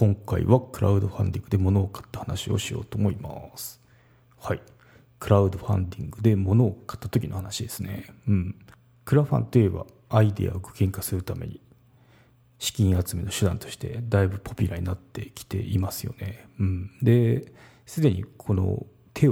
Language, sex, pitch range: Japanese, male, 100-120 Hz